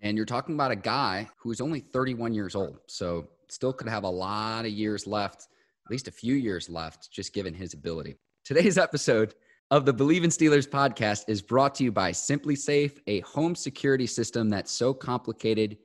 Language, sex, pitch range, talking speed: English, male, 95-135 Hz, 195 wpm